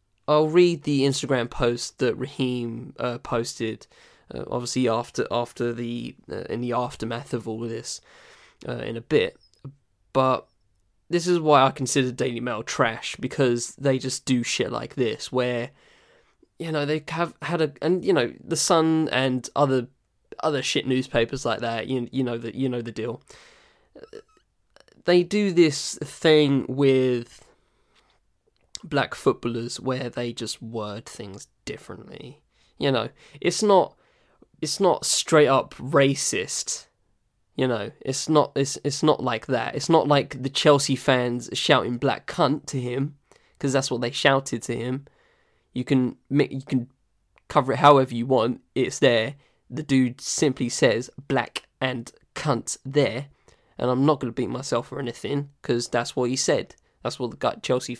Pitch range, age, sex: 120-145 Hz, 10-29, male